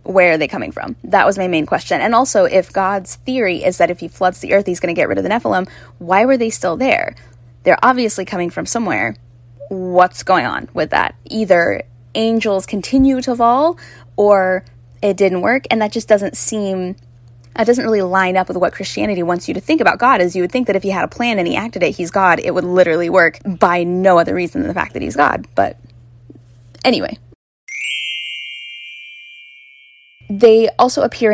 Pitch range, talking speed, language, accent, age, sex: 175-215 Hz, 205 wpm, English, American, 10-29, female